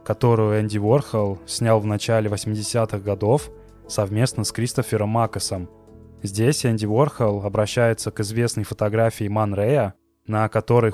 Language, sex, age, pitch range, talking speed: Russian, male, 20-39, 100-115 Hz, 120 wpm